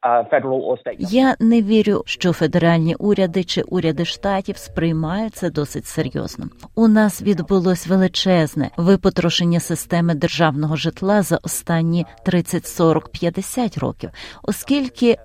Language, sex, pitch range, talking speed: Ukrainian, female, 165-215 Hz, 100 wpm